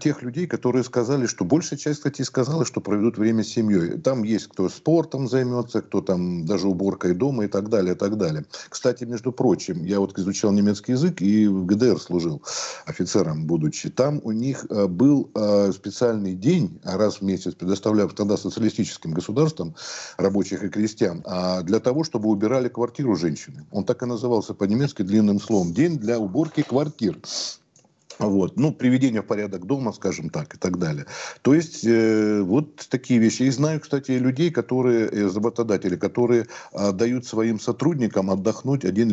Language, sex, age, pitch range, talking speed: Russian, male, 50-69, 100-130 Hz, 160 wpm